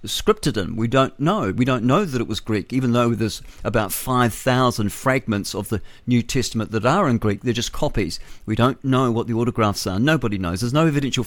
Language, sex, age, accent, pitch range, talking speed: English, male, 50-69, British, 110-140 Hz, 220 wpm